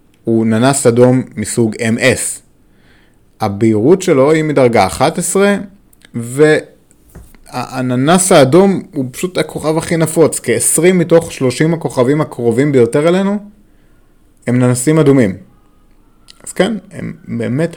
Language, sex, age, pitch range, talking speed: Hebrew, male, 30-49, 110-160 Hz, 105 wpm